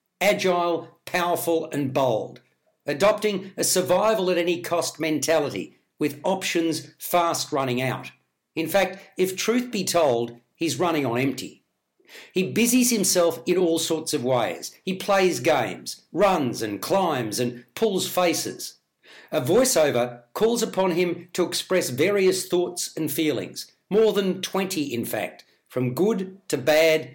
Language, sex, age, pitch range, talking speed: English, male, 60-79, 145-185 Hz, 135 wpm